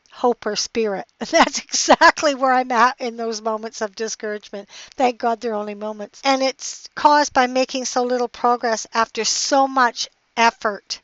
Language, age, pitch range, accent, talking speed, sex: English, 60-79, 200-240 Hz, American, 165 wpm, female